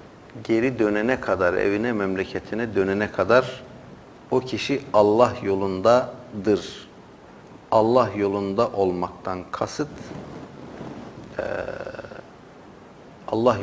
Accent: native